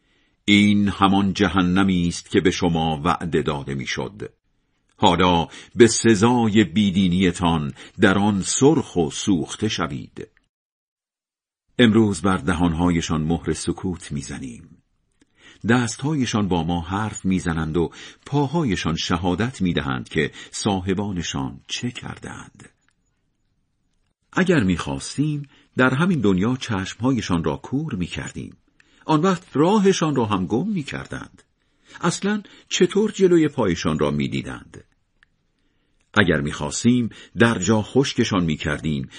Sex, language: male, Persian